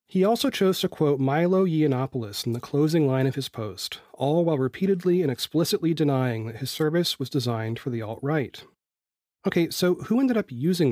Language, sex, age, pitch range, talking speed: English, male, 30-49, 120-160 Hz, 185 wpm